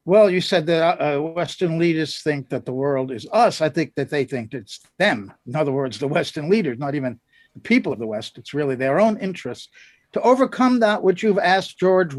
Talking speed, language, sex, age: 220 wpm, English, male, 60-79